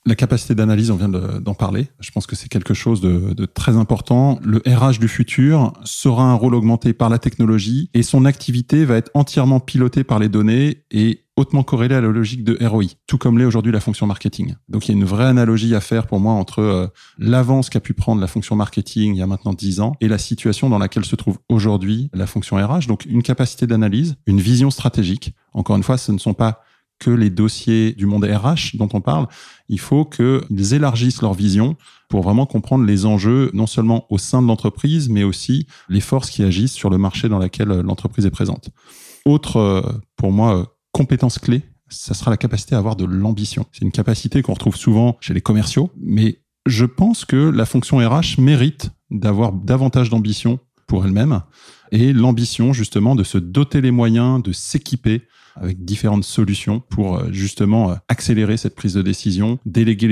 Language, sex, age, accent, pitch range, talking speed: French, male, 20-39, French, 105-125 Hz, 200 wpm